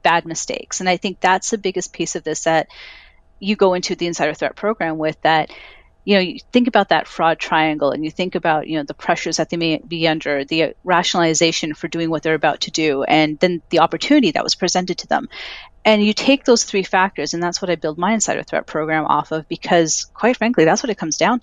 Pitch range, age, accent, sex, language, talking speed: 160-205 Hz, 30-49, American, female, English, 240 wpm